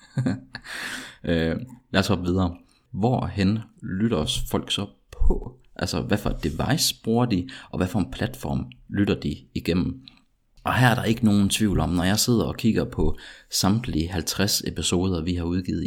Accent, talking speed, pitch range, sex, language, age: native, 165 wpm, 80-95 Hz, male, Danish, 30-49